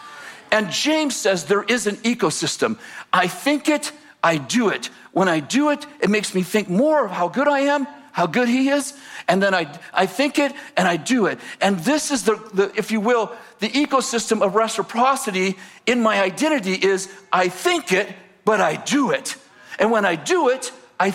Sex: male